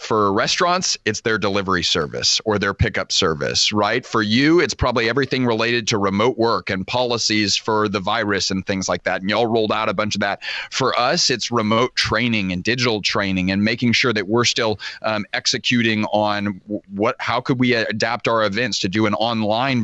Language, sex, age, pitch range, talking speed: English, male, 30-49, 105-125 Hz, 195 wpm